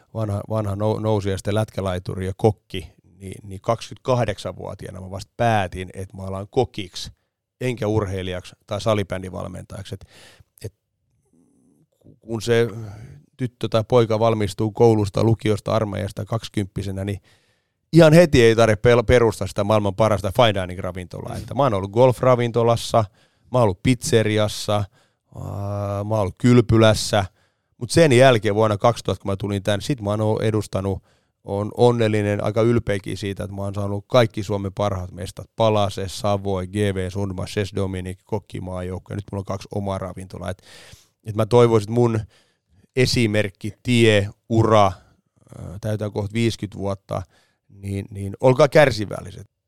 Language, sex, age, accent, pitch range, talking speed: Finnish, male, 30-49, native, 100-115 Hz, 135 wpm